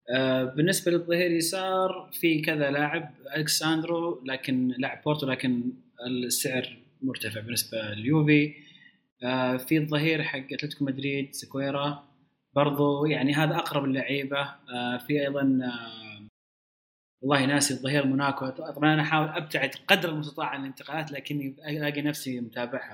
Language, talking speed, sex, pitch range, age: Arabic, 125 wpm, male, 130-160 Hz, 20-39